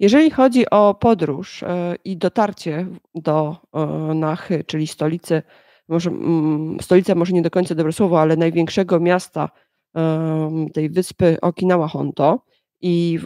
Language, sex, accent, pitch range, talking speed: Polish, female, native, 165-195 Hz, 120 wpm